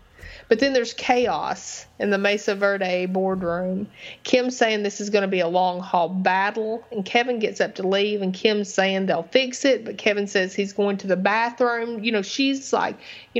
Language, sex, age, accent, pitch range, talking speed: English, female, 30-49, American, 185-225 Hz, 195 wpm